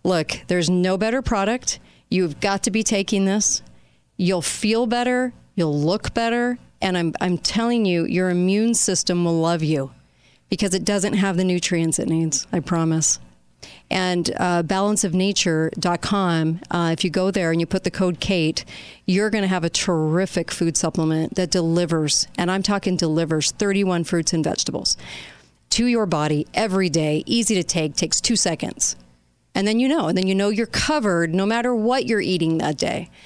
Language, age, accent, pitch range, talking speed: English, 40-59, American, 165-200 Hz, 175 wpm